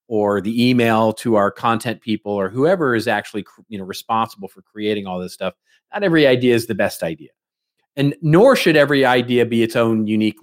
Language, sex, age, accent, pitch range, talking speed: English, male, 40-59, American, 105-150 Hz, 190 wpm